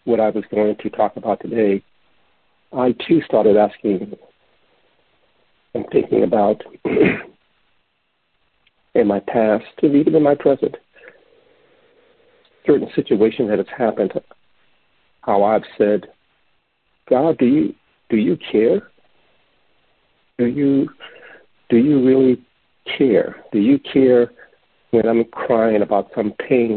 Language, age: English, 60-79